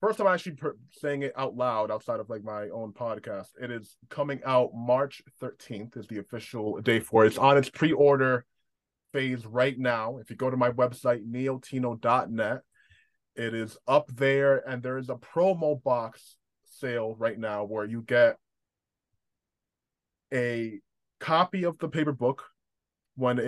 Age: 20-39